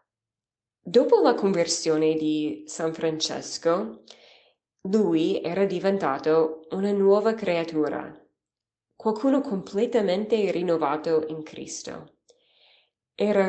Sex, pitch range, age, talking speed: female, 155-190 Hz, 20-39, 80 wpm